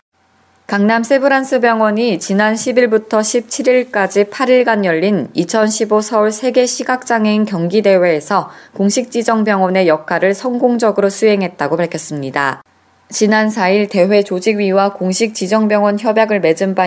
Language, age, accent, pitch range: Korean, 20-39, native, 185-220 Hz